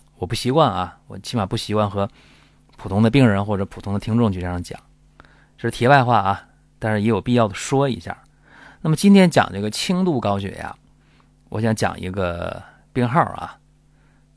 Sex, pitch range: male, 100-145 Hz